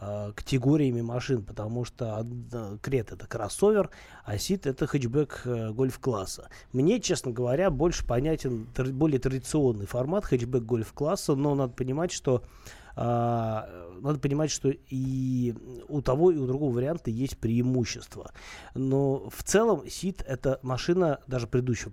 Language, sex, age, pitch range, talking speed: Russian, male, 20-39, 115-140 Hz, 130 wpm